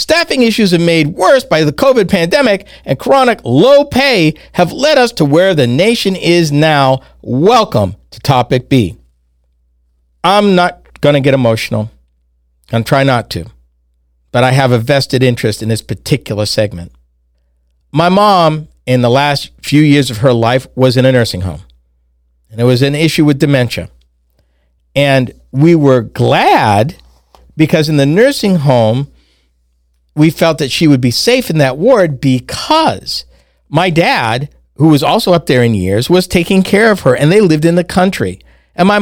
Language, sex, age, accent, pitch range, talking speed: English, male, 50-69, American, 110-180 Hz, 170 wpm